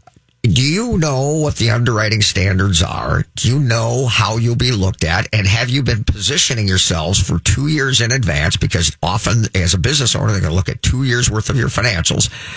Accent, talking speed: American, 210 wpm